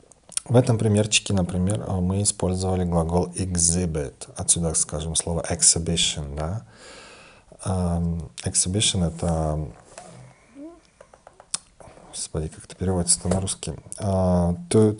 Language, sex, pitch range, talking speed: Russian, male, 90-110 Hz, 75 wpm